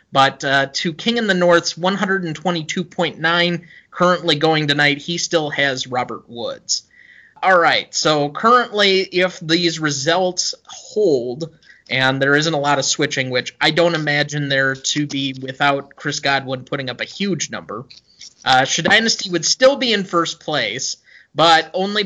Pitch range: 140-180 Hz